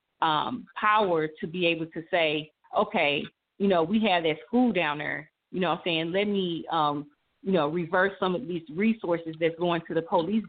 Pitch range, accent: 165-210 Hz, American